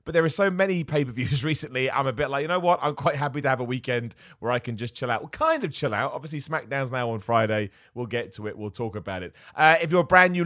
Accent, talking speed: British, 295 wpm